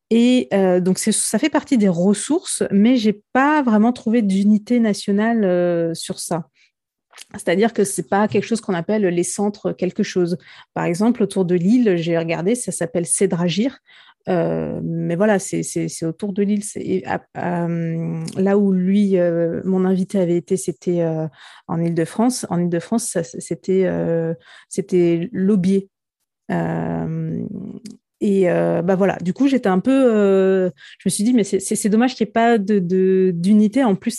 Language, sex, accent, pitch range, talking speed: French, female, French, 180-220 Hz, 175 wpm